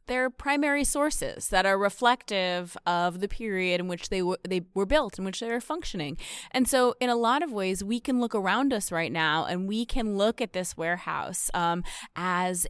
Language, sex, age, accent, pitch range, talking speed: English, female, 20-39, American, 175-230 Hz, 205 wpm